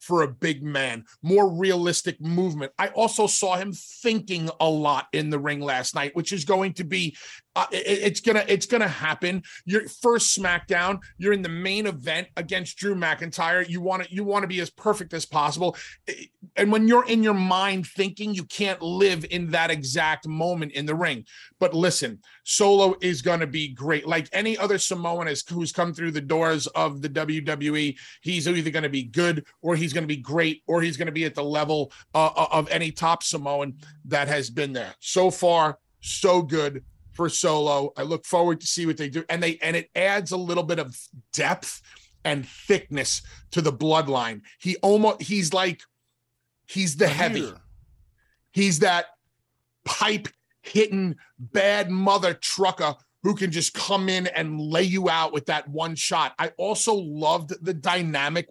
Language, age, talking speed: English, 30-49, 180 wpm